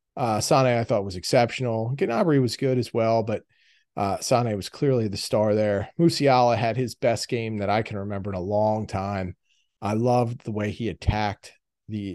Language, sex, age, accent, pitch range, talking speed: English, male, 40-59, American, 105-130 Hz, 195 wpm